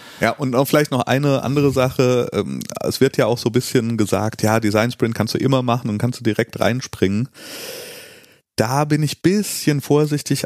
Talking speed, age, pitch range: 195 wpm, 30-49, 105-130 Hz